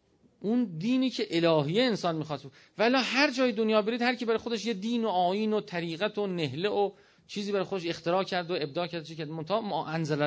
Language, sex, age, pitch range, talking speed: Persian, male, 40-59, 140-200 Hz, 205 wpm